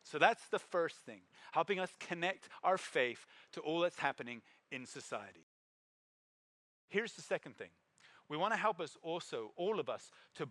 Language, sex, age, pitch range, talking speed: English, male, 30-49, 160-215 Hz, 165 wpm